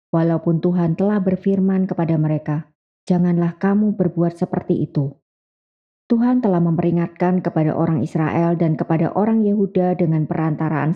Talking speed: 125 wpm